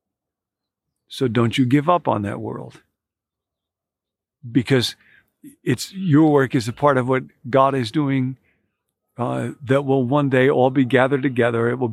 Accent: American